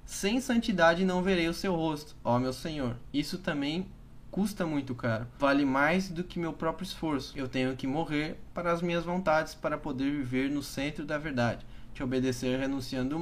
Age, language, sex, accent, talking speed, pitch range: 10-29, Portuguese, male, Brazilian, 190 wpm, 135-180 Hz